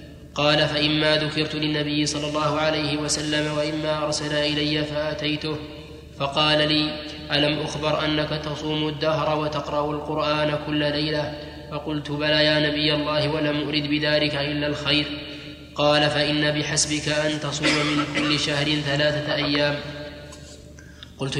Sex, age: male, 20-39